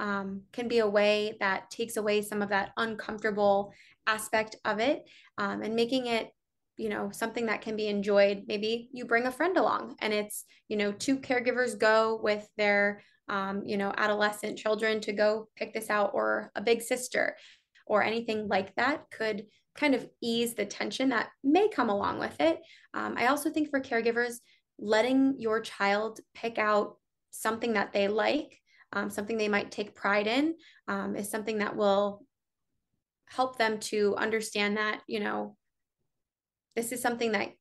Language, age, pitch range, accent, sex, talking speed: English, 20-39, 205-235 Hz, American, female, 175 wpm